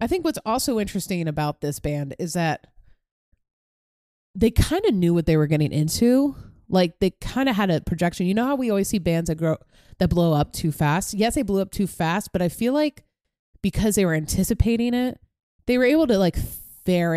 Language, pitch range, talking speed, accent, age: English, 150-220 Hz, 215 wpm, American, 20-39